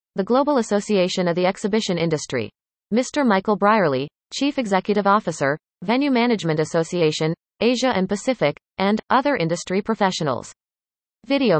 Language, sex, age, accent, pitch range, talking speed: English, female, 30-49, American, 165-230 Hz, 125 wpm